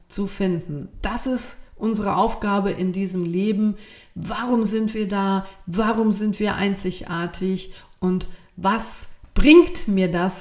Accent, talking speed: German, 125 wpm